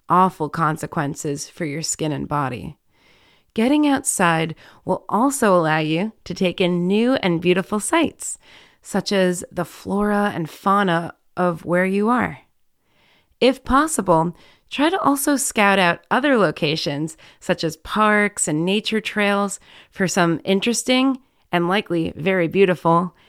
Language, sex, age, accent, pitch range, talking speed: English, female, 30-49, American, 175-220 Hz, 135 wpm